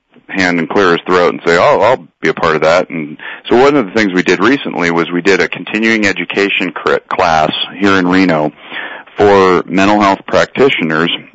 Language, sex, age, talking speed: English, male, 40-59, 195 wpm